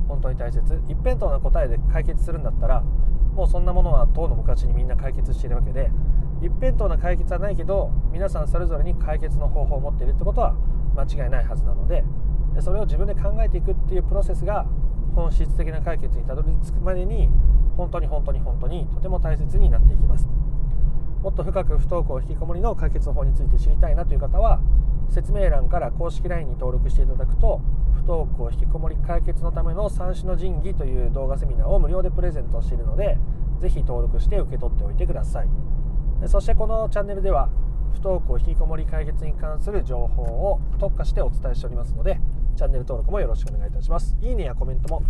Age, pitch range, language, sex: 30-49, 130-160 Hz, Japanese, male